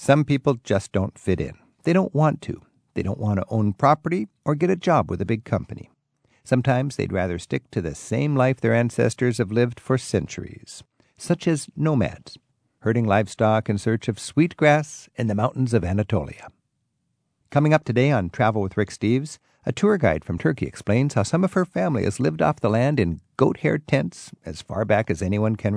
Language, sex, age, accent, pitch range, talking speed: English, male, 50-69, American, 105-145 Hz, 200 wpm